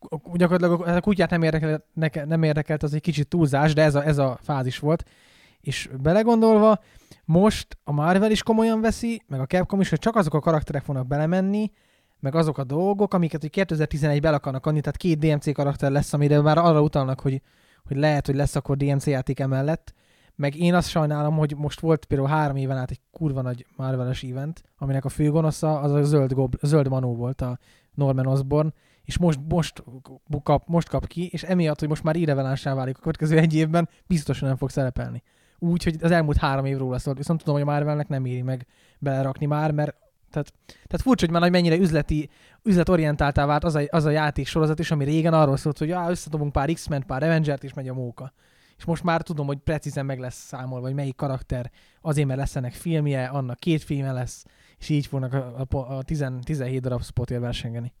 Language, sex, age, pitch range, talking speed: Hungarian, male, 20-39, 135-160 Hz, 200 wpm